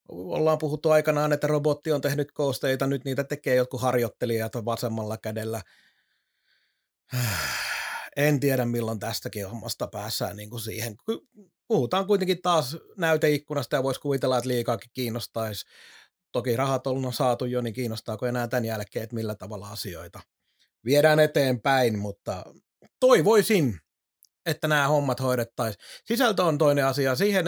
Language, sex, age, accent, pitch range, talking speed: Finnish, male, 30-49, native, 120-155 Hz, 135 wpm